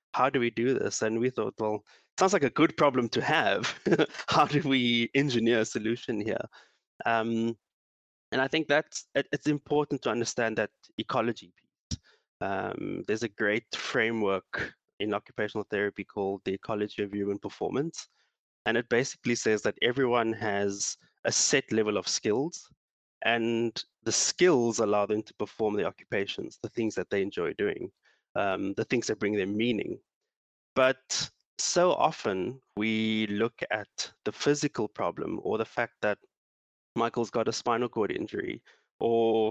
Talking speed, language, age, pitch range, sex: 160 wpm, English, 20-39, 105-130 Hz, male